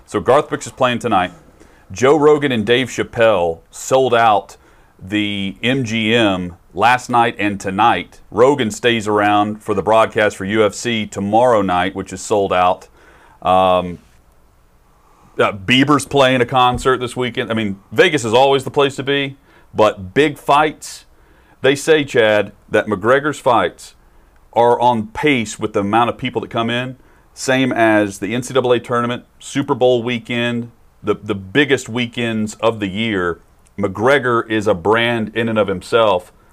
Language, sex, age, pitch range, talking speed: English, male, 40-59, 95-125 Hz, 155 wpm